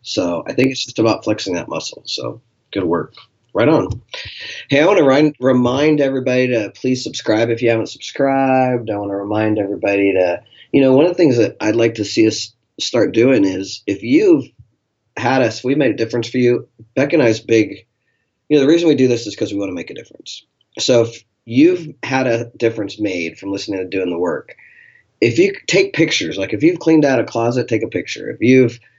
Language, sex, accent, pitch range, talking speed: English, male, American, 100-130 Hz, 220 wpm